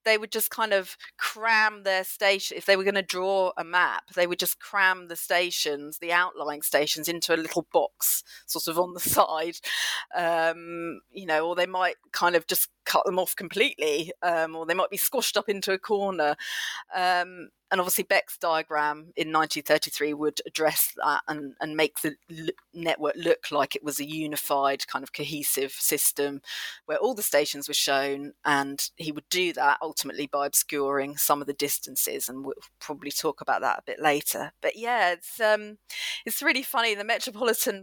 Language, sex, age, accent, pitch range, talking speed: English, female, 30-49, British, 150-210 Hz, 185 wpm